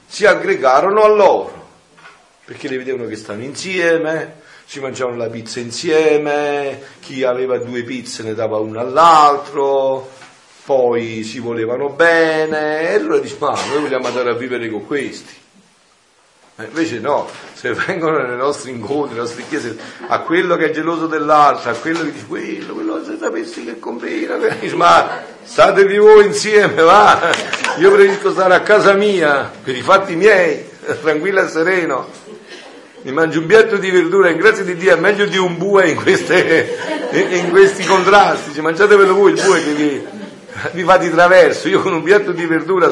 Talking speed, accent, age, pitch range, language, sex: 165 wpm, native, 50-69, 115-185 Hz, Italian, male